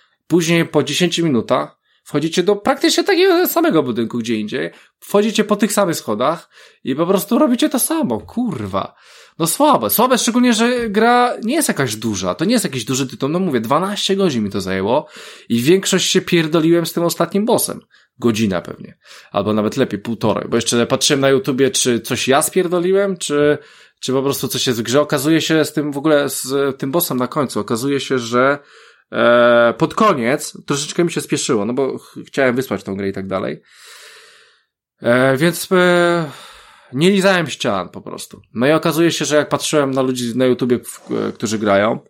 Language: Polish